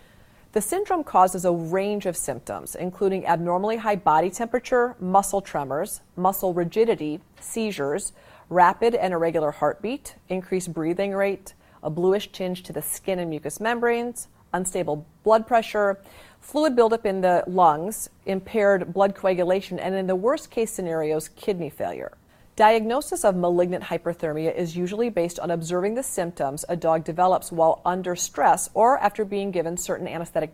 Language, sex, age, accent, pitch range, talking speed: English, female, 30-49, American, 170-210 Hz, 145 wpm